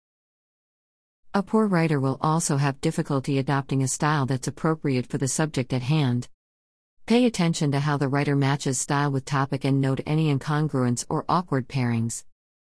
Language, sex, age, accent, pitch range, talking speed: English, female, 50-69, American, 130-155 Hz, 160 wpm